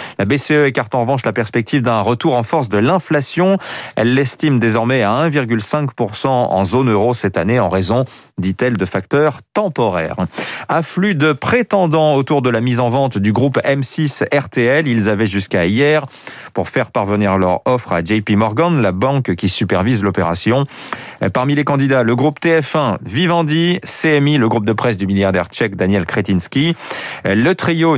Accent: French